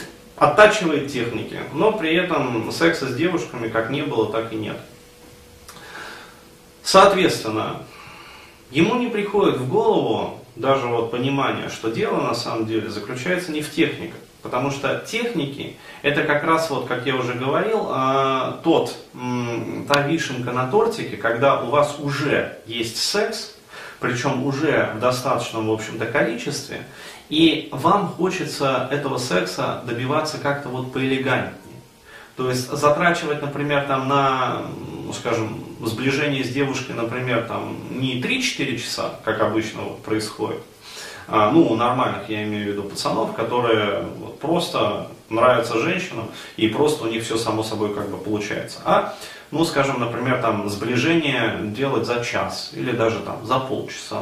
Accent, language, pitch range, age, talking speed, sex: native, Russian, 115-145 Hz, 30-49, 135 wpm, male